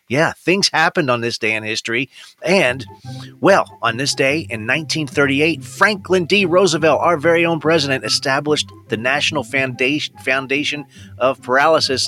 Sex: male